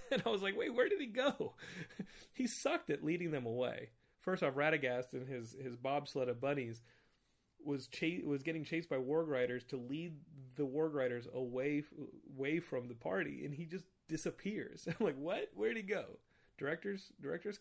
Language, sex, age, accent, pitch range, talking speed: English, male, 30-49, American, 120-155 Hz, 185 wpm